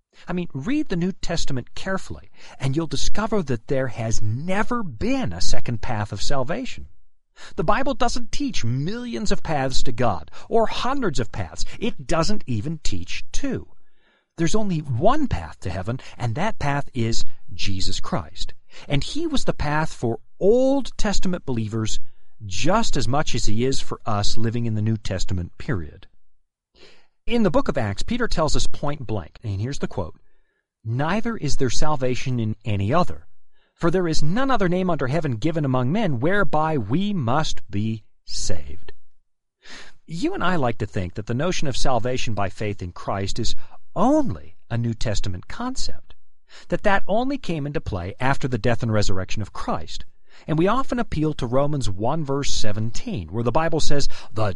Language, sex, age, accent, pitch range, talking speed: English, male, 40-59, American, 110-170 Hz, 175 wpm